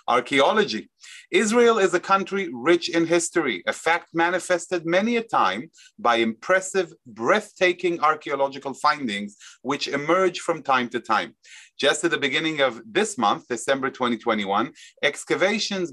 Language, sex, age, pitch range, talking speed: English, male, 30-49, 155-205 Hz, 130 wpm